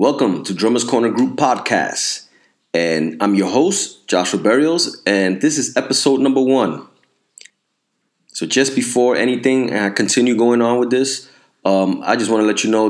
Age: 30-49